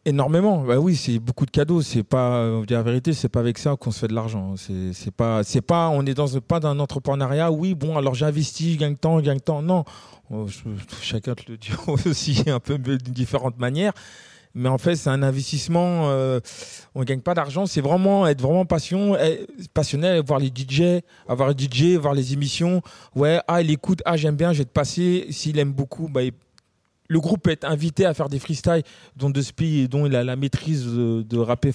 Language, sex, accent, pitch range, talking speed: French, male, French, 130-165 Hz, 215 wpm